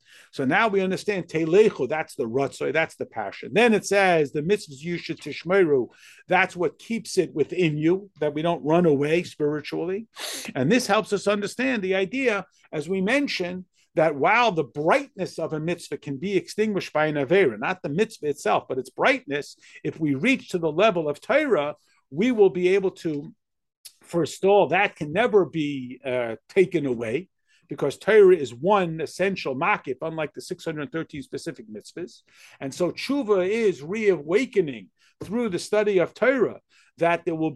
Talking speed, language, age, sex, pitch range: 165 wpm, English, 50-69, male, 160-205 Hz